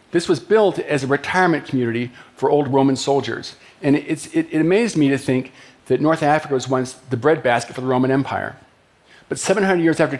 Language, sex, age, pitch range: Japanese, male, 50-69, 125-150 Hz